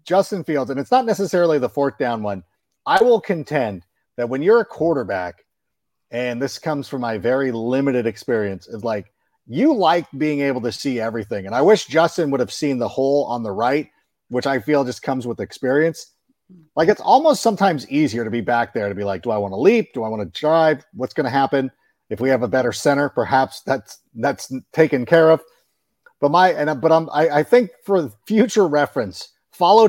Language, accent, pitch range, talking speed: English, American, 125-160 Hz, 210 wpm